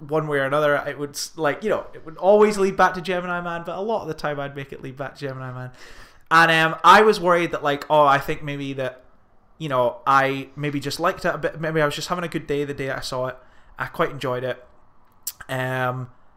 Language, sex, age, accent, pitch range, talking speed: English, male, 20-39, British, 125-165 Hz, 255 wpm